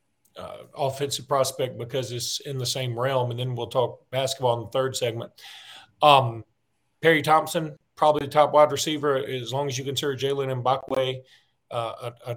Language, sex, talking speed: English, male, 170 wpm